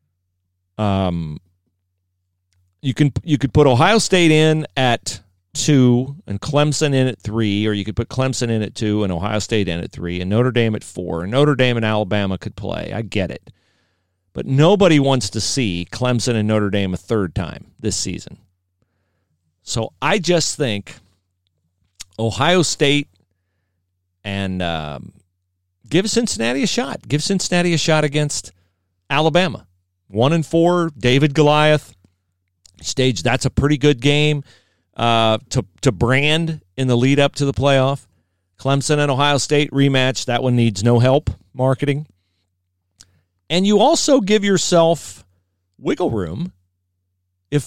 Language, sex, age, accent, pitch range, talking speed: English, male, 40-59, American, 90-145 Hz, 145 wpm